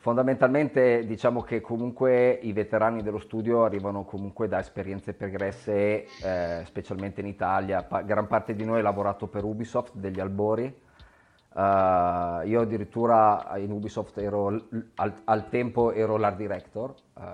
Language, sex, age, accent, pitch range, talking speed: Italian, male, 30-49, native, 100-115 Hz, 145 wpm